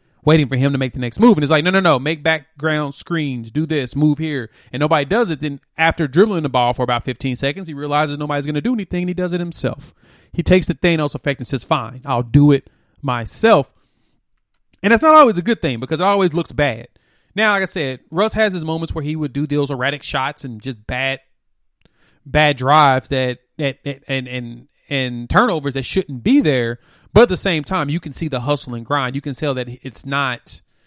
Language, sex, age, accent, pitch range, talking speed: English, male, 30-49, American, 125-160 Hz, 230 wpm